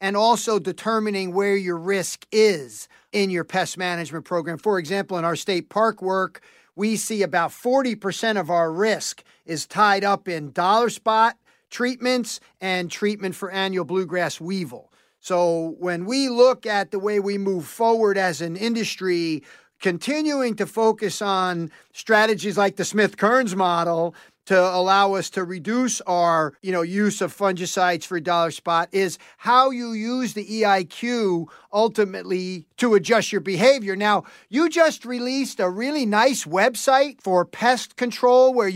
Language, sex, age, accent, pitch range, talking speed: English, male, 50-69, American, 185-230 Hz, 155 wpm